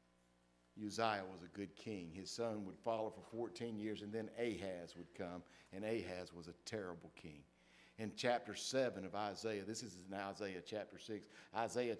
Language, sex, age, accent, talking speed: English, male, 50-69, American, 175 wpm